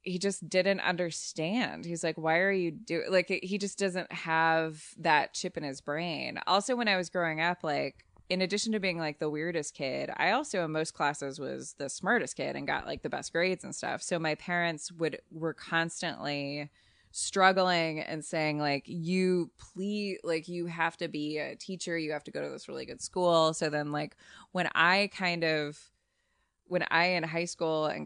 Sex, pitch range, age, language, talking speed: female, 150-180 Hz, 20-39, English, 200 wpm